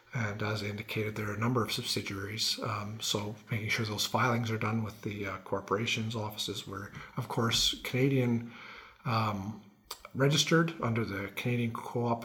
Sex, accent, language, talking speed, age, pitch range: male, American, English, 160 wpm, 50-69, 110-125 Hz